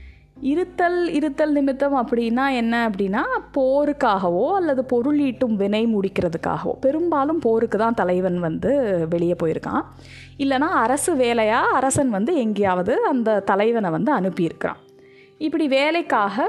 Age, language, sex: 20-39, Tamil, female